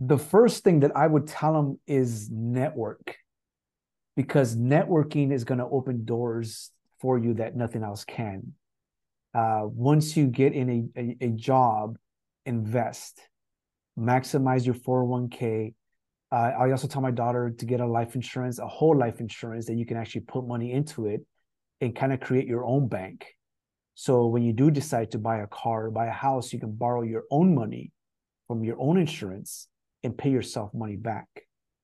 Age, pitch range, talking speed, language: 30-49, 115-130 Hz, 175 wpm, English